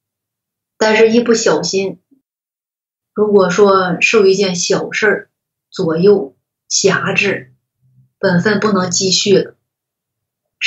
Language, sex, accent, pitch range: Chinese, female, native, 160-205 Hz